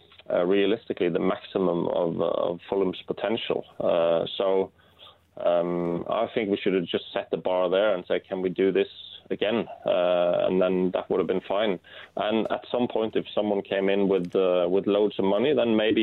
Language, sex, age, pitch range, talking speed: English, male, 30-49, 90-100 Hz, 195 wpm